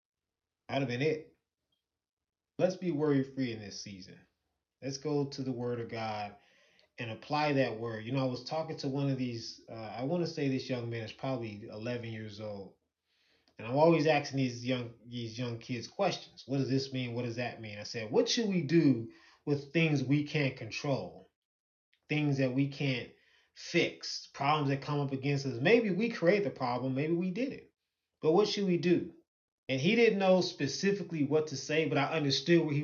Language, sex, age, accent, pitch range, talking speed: English, male, 20-39, American, 115-155 Hz, 200 wpm